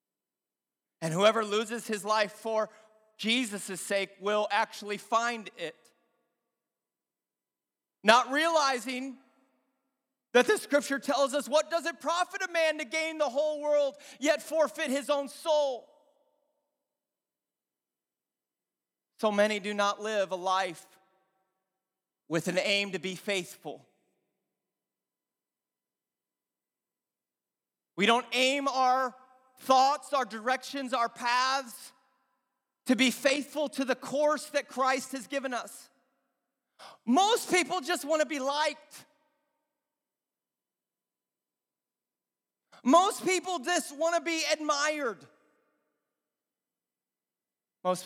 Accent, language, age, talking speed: American, English, 40-59, 105 wpm